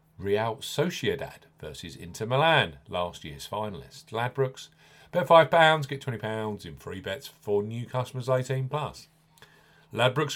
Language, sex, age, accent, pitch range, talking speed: English, male, 40-59, British, 105-140 Hz, 120 wpm